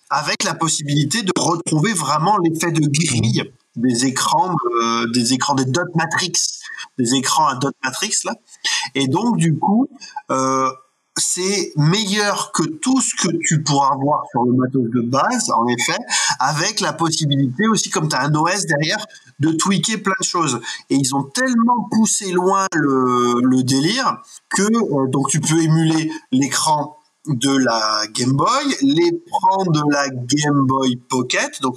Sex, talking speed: male, 165 wpm